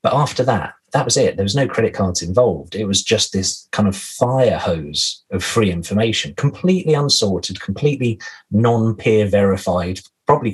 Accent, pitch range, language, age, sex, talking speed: British, 90-125 Hz, English, 30-49, male, 165 wpm